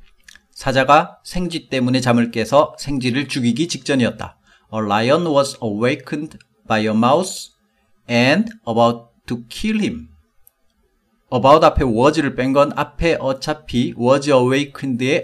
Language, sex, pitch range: Korean, male, 120-160 Hz